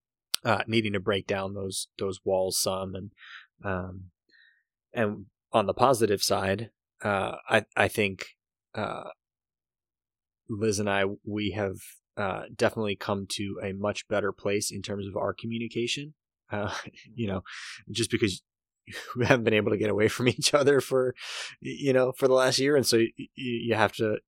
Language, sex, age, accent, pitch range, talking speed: English, male, 20-39, American, 95-110 Hz, 165 wpm